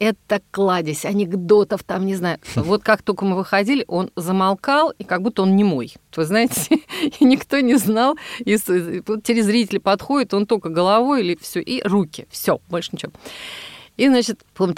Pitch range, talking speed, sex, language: 180-260 Hz, 165 wpm, female, Russian